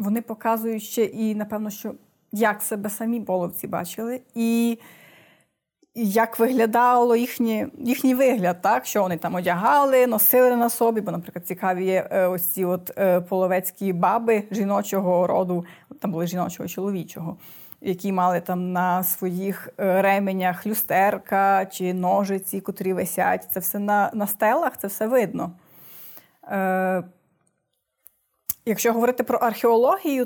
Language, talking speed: Ukrainian, 125 wpm